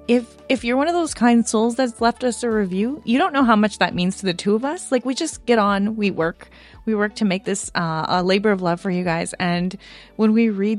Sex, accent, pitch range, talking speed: female, American, 155-225 Hz, 275 wpm